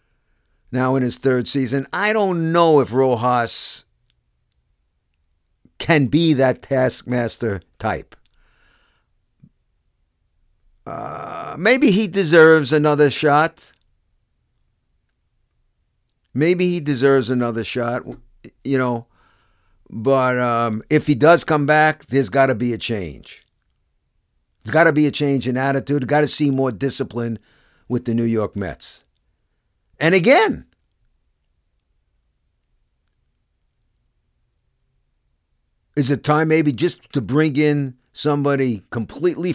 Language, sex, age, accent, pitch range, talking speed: English, male, 50-69, American, 115-155 Hz, 110 wpm